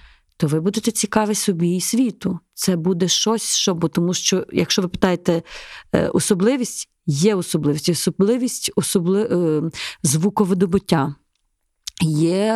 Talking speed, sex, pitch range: 105 wpm, female, 170-200 Hz